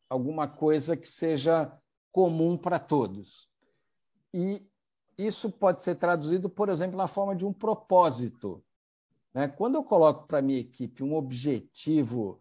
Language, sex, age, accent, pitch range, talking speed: Portuguese, male, 60-79, Brazilian, 140-180 Hz, 140 wpm